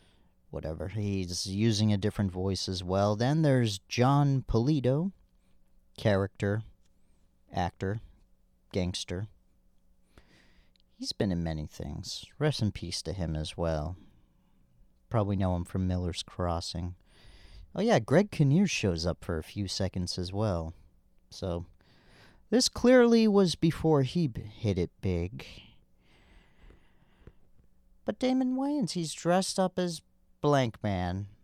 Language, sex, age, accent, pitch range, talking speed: English, male, 40-59, American, 90-120 Hz, 120 wpm